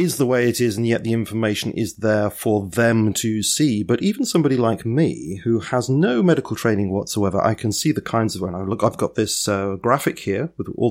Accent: British